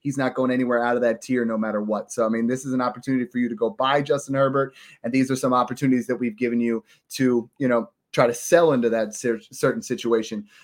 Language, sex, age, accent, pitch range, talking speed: English, male, 30-49, American, 120-145 Hz, 250 wpm